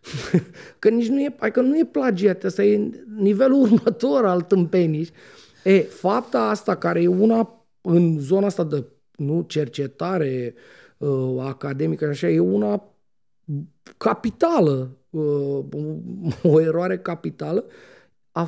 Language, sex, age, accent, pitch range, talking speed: Romanian, male, 30-49, native, 155-210 Hz, 125 wpm